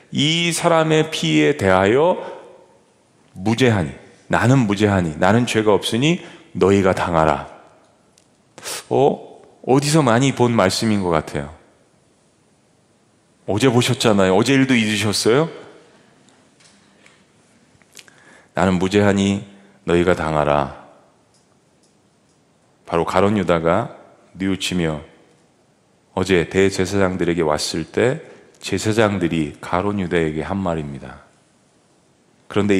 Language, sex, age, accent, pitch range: Korean, male, 40-59, native, 85-120 Hz